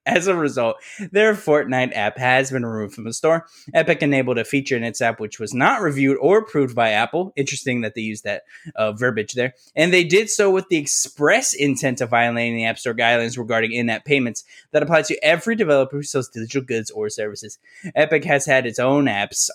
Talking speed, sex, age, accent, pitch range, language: 210 wpm, male, 10-29, American, 120-170 Hz, English